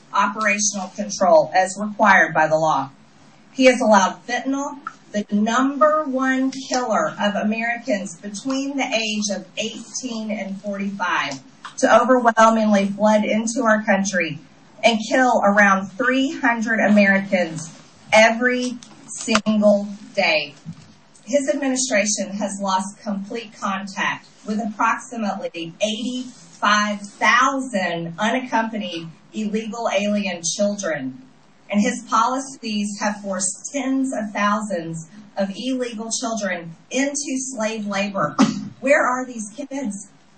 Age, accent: 40-59, American